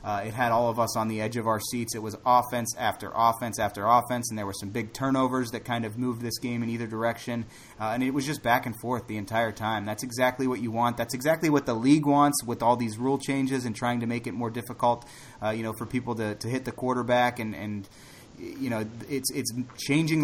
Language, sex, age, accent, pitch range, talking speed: English, male, 30-49, American, 110-130 Hz, 250 wpm